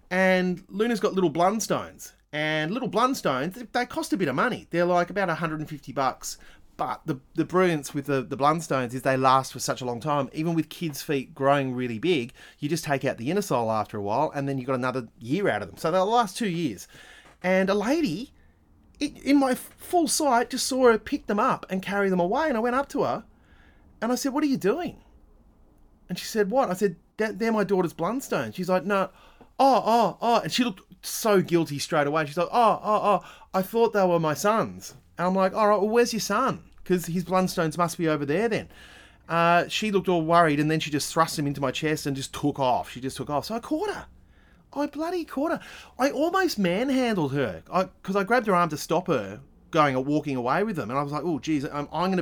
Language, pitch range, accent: English, 145-215 Hz, Australian